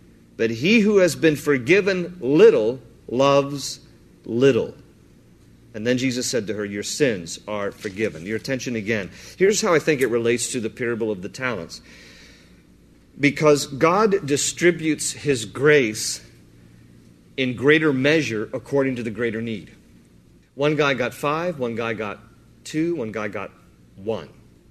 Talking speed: 145 wpm